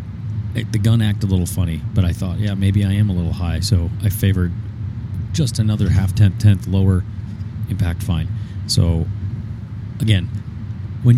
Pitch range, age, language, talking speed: 95-110 Hz, 30-49, English, 155 wpm